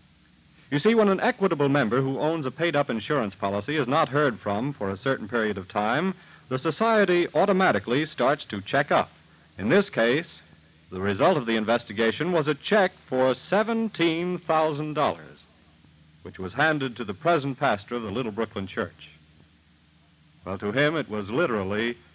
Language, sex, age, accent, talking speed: English, male, 60-79, American, 165 wpm